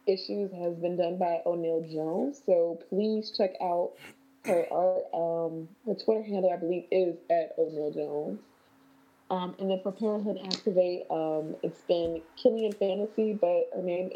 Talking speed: 155 wpm